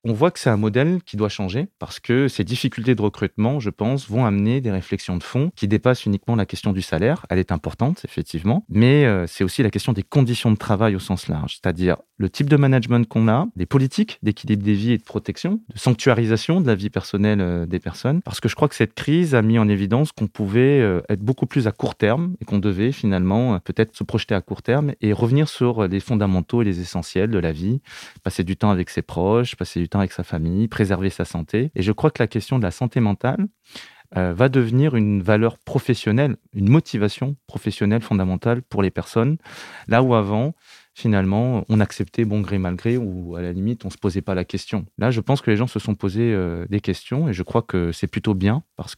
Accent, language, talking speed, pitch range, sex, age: French, French, 230 wpm, 95-125 Hz, male, 30-49